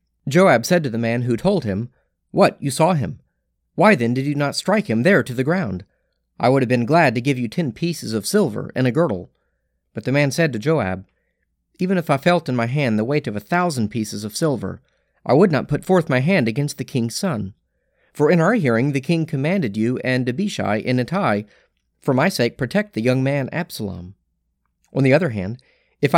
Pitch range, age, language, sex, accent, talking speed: 105-145 Hz, 40-59, English, male, American, 220 wpm